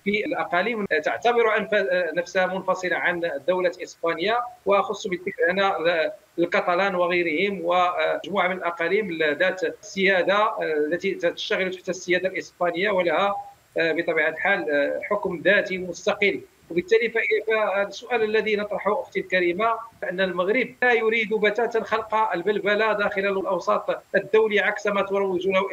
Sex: male